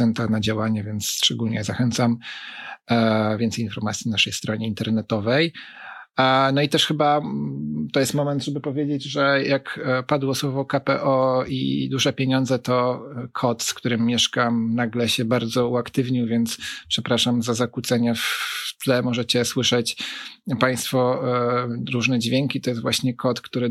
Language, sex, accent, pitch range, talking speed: Polish, male, native, 115-130 Hz, 135 wpm